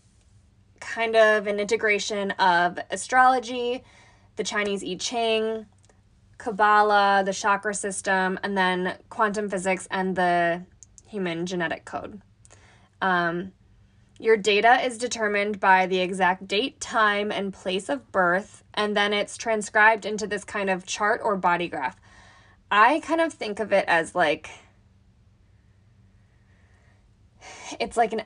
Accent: American